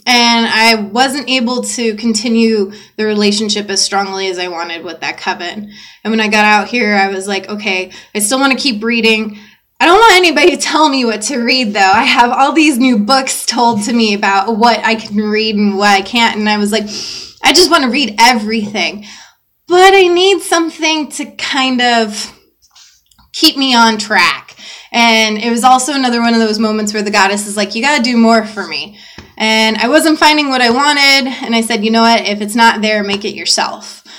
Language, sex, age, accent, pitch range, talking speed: English, female, 20-39, American, 210-250 Hz, 215 wpm